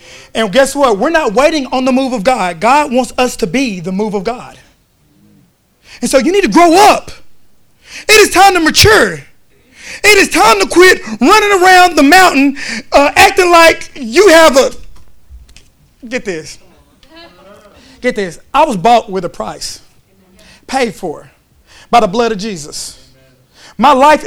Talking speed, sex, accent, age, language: 165 wpm, male, American, 30-49, English